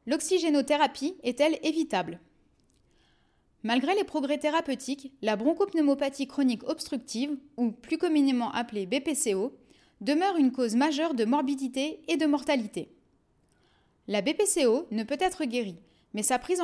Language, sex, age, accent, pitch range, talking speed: French, female, 20-39, French, 235-295 Hz, 125 wpm